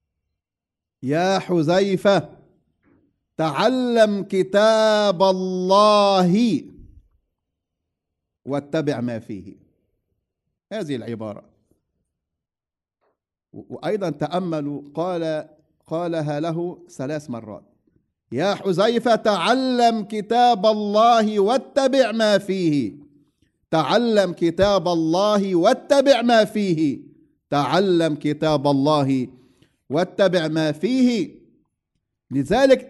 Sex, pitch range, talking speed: male, 150-230 Hz, 70 wpm